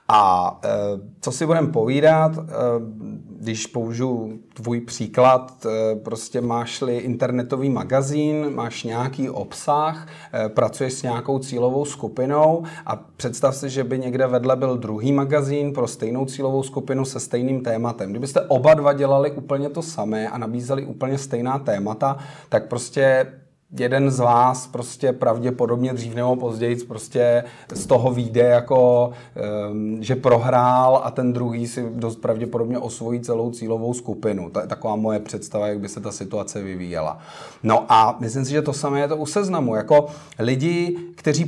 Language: Czech